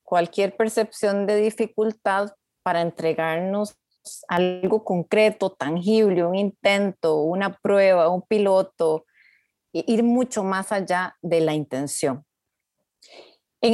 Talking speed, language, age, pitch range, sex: 105 wpm, Spanish, 30-49, 175-225 Hz, female